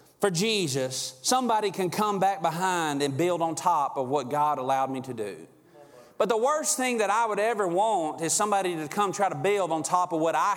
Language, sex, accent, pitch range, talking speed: English, male, American, 175-215 Hz, 220 wpm